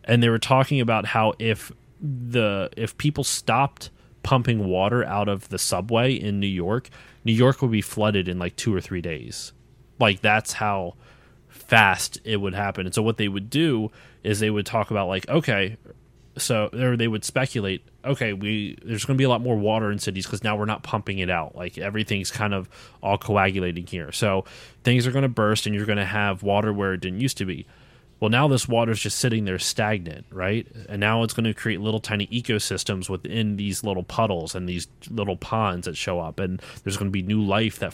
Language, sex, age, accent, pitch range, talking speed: English, male, 20-39, American, 100-120 Hz, 220 wpm